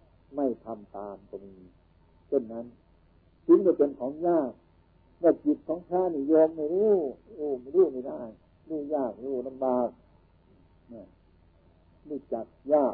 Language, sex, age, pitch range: Thai, male, 60-79, 90-140 Hz